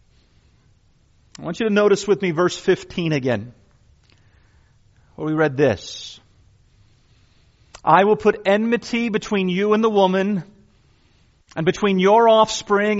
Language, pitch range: English, 135-195 Hz